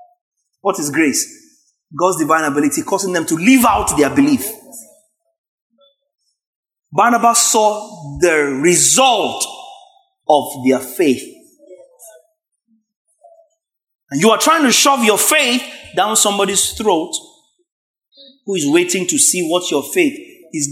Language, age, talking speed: English, 30-49, 115 wpm